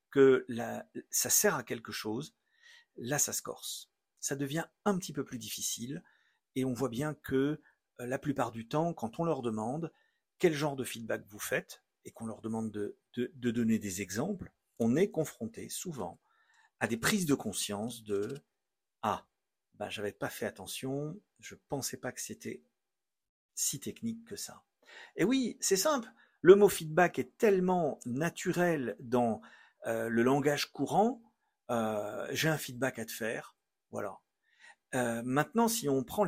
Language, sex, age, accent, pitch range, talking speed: French, male, 50-69, French, 120-185 Hz, 175 wpm